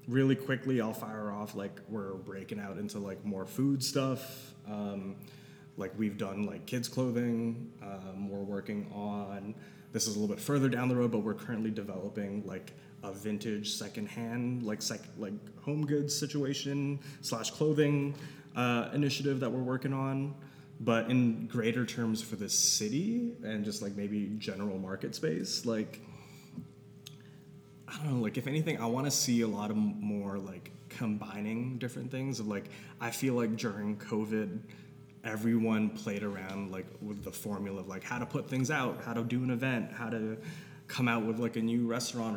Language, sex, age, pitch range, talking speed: English, male, 20-39, 105-130 Hz, 175 wpm